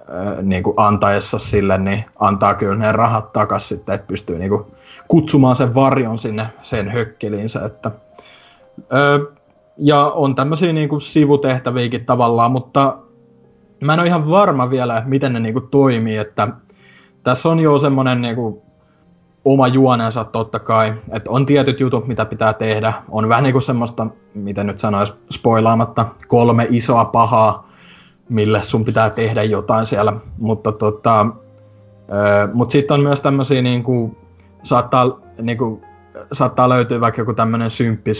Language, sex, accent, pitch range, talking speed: Finnish, male, native, 105-130 Hz, 140 wpm